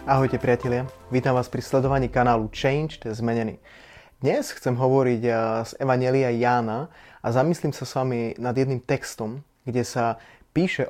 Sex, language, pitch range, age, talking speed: male, Slovak, 120-135 Hz, 20-39, 140 wpm